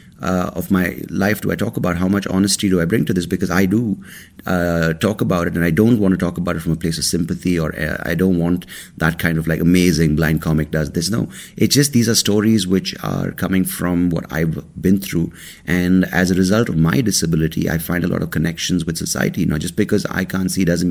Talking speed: 245 wpm